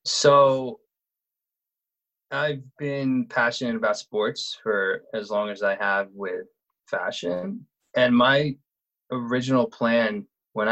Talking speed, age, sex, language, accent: 105 wpm, 20-39, male, English, American